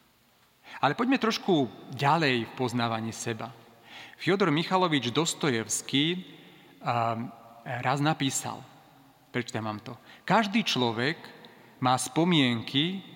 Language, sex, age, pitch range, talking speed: Slovak, male, 40-59, 125-175 Hz, 85 wpm